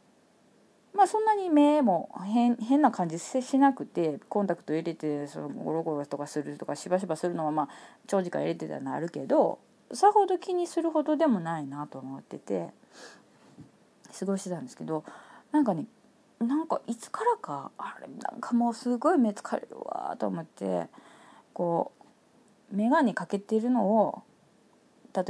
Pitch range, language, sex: 170-240 Hz, Japanese, female